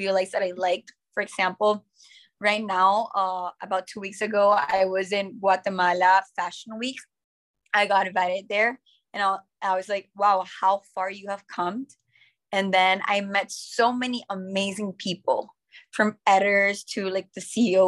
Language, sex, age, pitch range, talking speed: English, female, 20-39, 190-210 Hz, 160 wpm